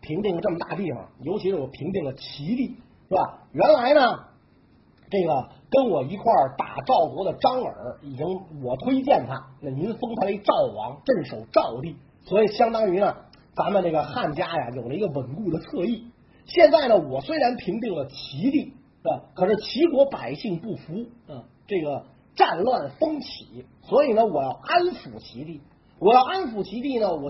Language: Chinese